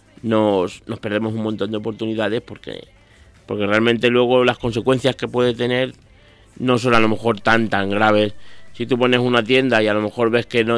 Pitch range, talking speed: 105-125 Hz, 200 wpm